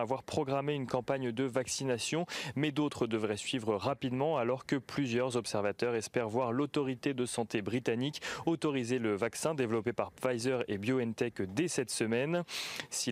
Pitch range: 115-140 Hz